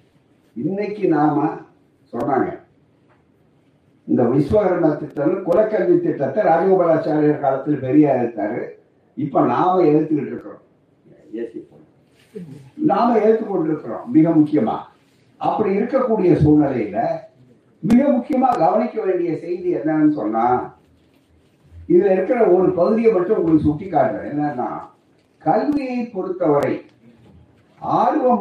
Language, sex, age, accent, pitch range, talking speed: Tamil, male, 60-79, native, 150-215 Hz, 50 wpm